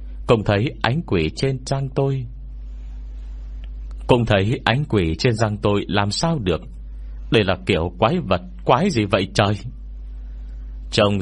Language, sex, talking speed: Vietnamese, male, 145 wpm